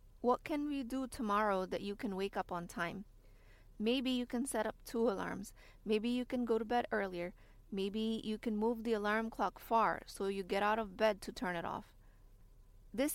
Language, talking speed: English, 205 wpm